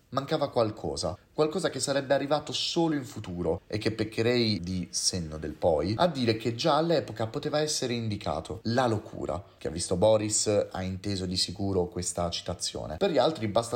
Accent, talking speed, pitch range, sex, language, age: native, 175 wpm, 95-135 Hz, male, Italian, 30-49